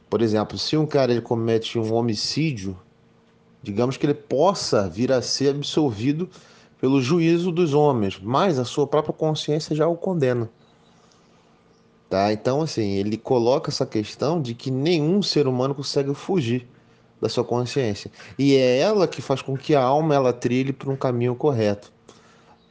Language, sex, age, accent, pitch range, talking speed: Portuguese, male, 30-49, Brazilian, 110-145 Hz, 155 wpm